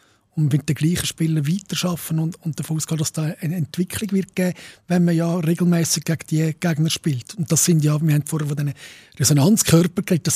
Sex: male